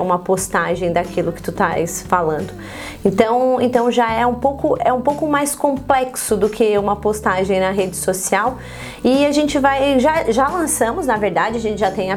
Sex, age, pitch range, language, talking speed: female, 30-49, 185-240 Hz, Portuguese, 190 wpm